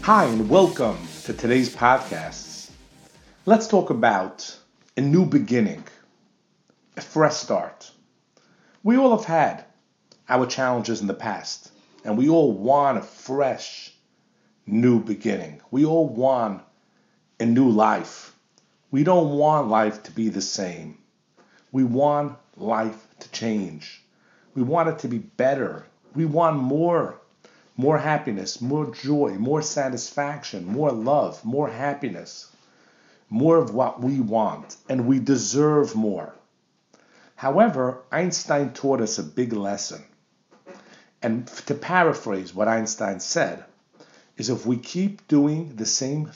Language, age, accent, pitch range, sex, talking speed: English, 50-69, American, 110-155 Hz, male, 130 wpm